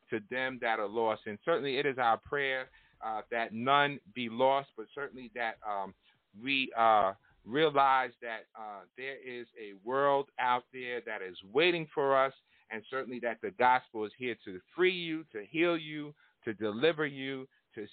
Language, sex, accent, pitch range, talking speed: English, male, American, 115-140 Hz, 175 wpm